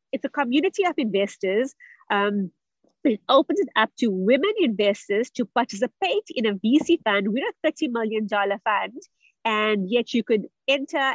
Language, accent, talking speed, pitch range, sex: English, Indian, 155 wpm, 200-255 Hz, female